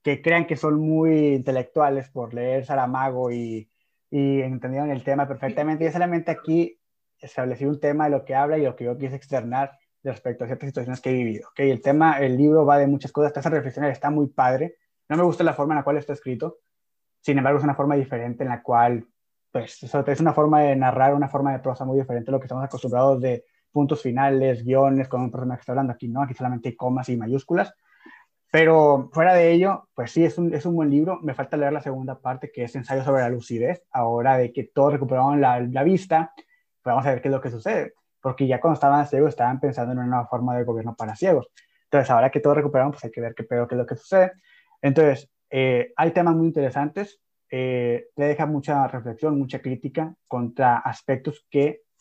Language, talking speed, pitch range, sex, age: Spanish, 225 wpm, 125-150 Hz, male, 20-39